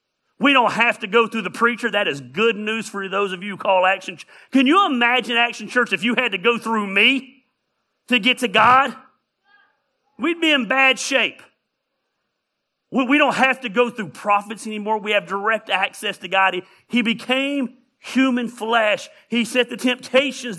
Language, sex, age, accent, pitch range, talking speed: English, male, 40-59, American, 200-255 Hz, 185 wpm